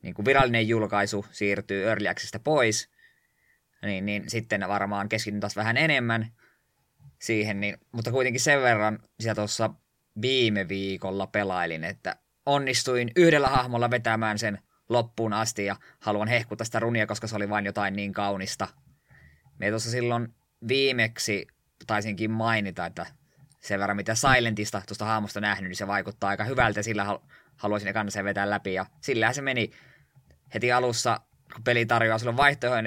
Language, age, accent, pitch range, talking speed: Finnish, 20-39, native, 100-120 Hz, 145 wpm